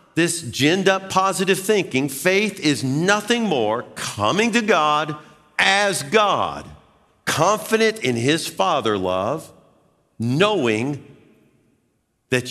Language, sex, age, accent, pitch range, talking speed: English, male, 50-69, American, 95-135 Hz, 100 wpm